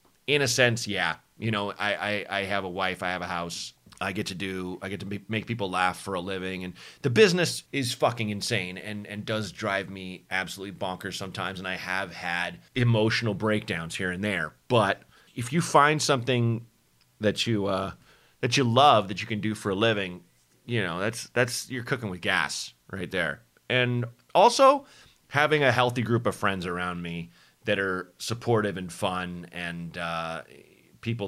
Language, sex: English, male